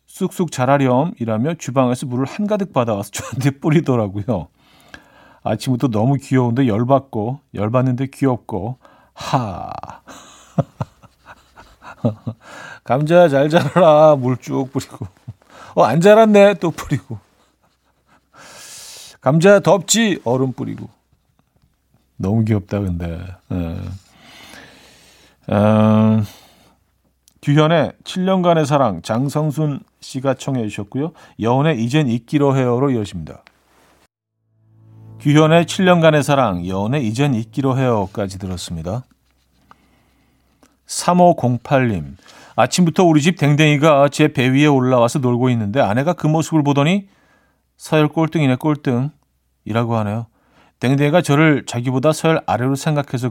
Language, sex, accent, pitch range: Korean, male, native, 110-150 Hz